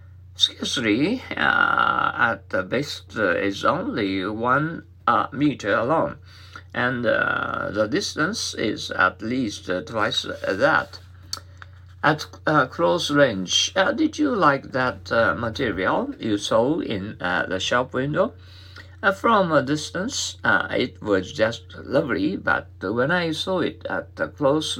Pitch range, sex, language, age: 90-145 Hz, male, Japanese, 50-69